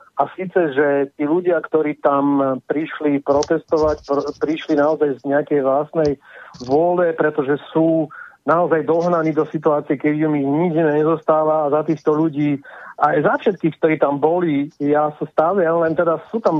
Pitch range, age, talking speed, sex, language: 150-170 Hz, 40-59, 165 wpm, male, Czech